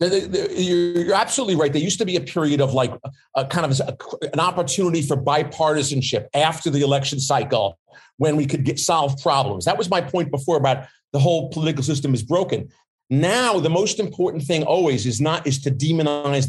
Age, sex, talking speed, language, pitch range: 40-59, male, 200 wpm, English, 135-170 Hz